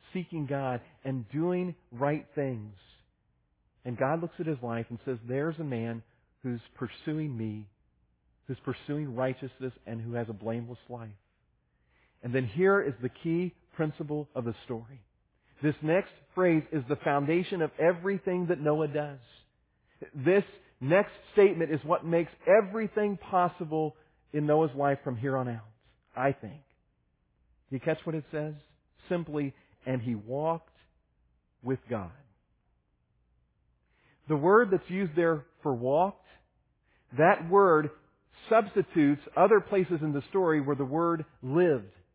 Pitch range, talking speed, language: 120-175 Hz, 140 wpm, English